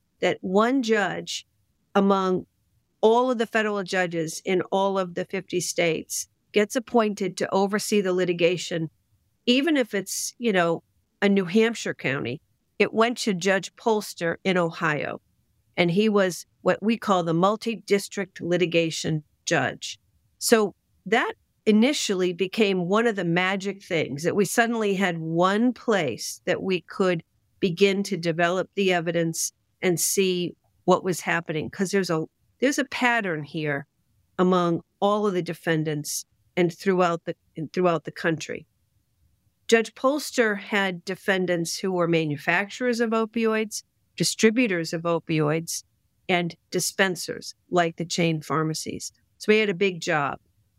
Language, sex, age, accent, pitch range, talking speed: English, female, 50-69, American, 165-210 Hz, 140 wpm